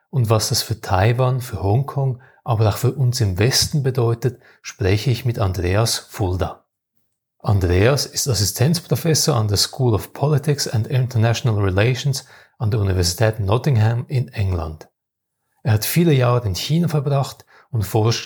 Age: 30-49